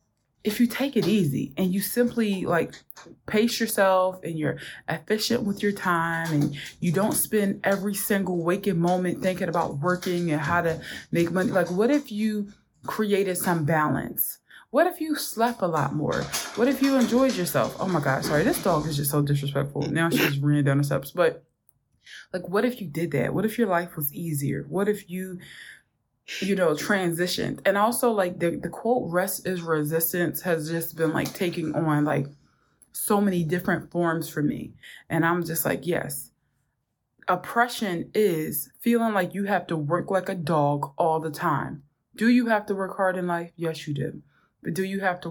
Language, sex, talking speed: English, female, 190 wpm